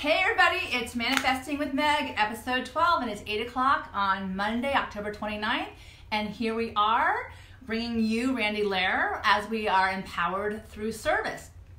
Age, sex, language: 30-49, female, English